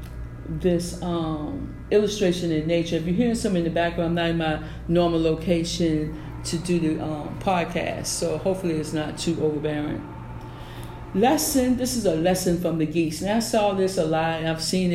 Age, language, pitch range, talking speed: 50-69, English, 155-185 Hz, 185 wpm